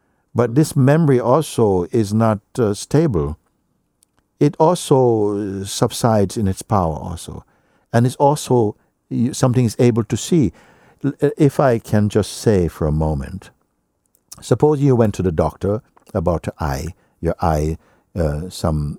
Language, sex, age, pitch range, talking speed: English, male, 60-79, 80-115 Hz, 140 wpm